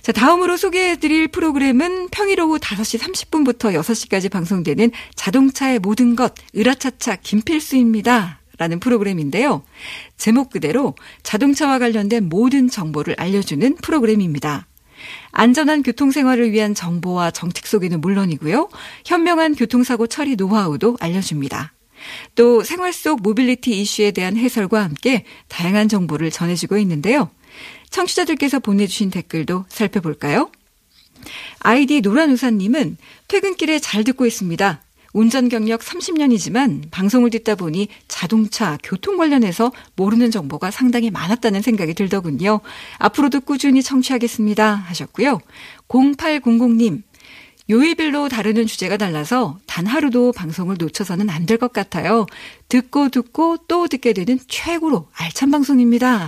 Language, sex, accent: Korean, female, native